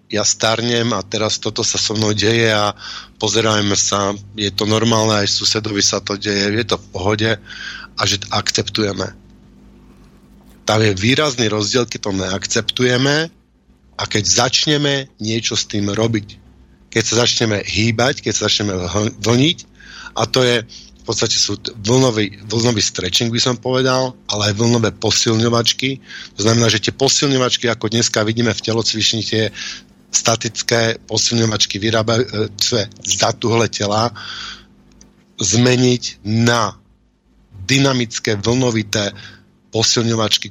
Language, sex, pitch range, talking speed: Slovak, male, 105-120 Hz, 130 wpm